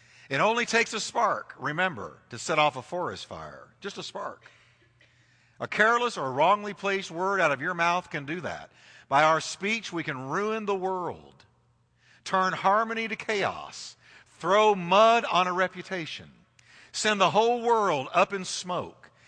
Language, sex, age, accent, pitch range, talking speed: English, male, 50-69, American, 150-200 Hz, 160 wpm